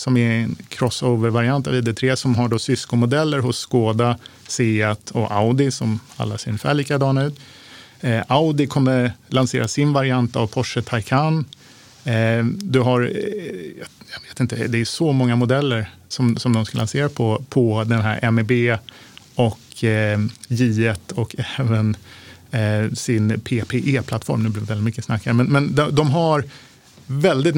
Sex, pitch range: male, 115-135 Hz